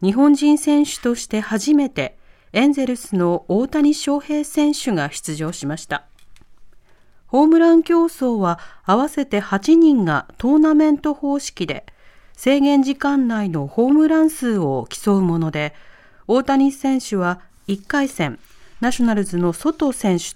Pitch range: 175-275 Hz